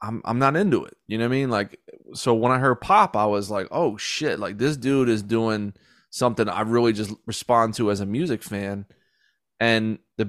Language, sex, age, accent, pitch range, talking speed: English, male, 20-39, American, 105-120 Hz, 220 wpm